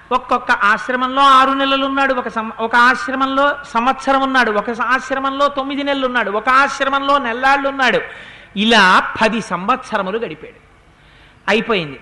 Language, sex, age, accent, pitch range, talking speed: Telugu, male, 50-69, native, 225-280 Hz, 120 wpm